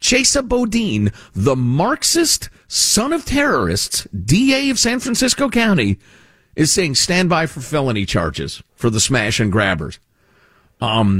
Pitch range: 105-170 Hz